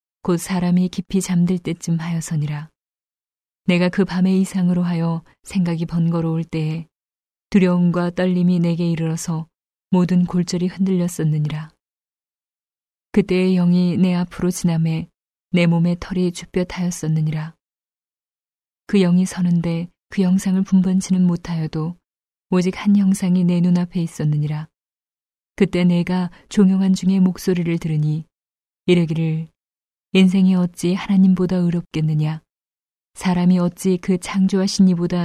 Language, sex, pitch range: Korean, female, 165-185 Hz